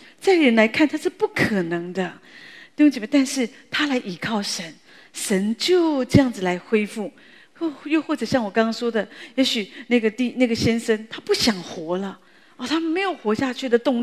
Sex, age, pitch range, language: female, 40-59, 205-280 Hz, Chinese